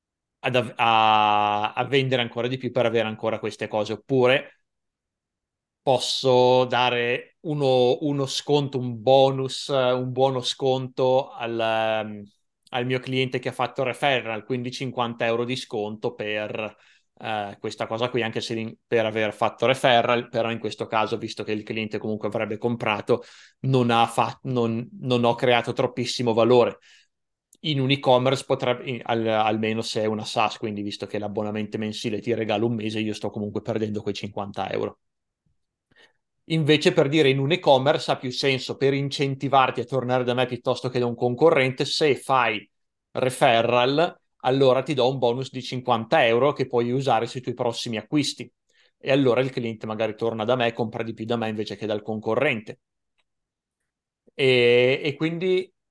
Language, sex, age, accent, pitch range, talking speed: Italian, male, 30-49, native, 110-130 Hz, 160 wpm